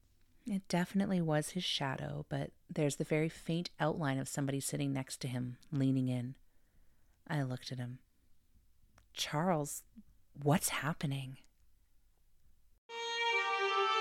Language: English